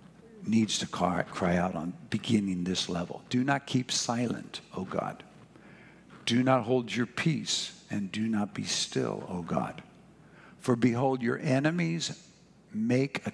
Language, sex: English, male